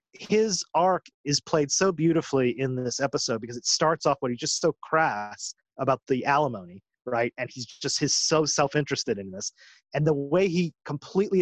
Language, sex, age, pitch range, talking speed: English, male, 30-49, 135-170 Hz, 185 wpm